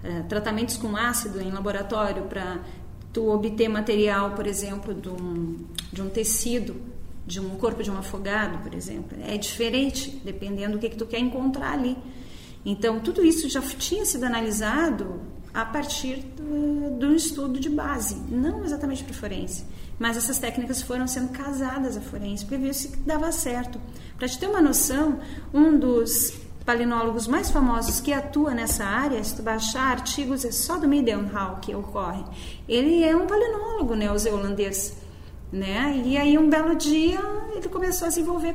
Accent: Brazilian